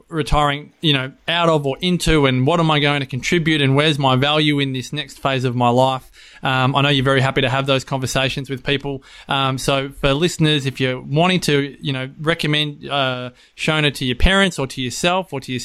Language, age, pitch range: English, 20-39, 140-160 Hz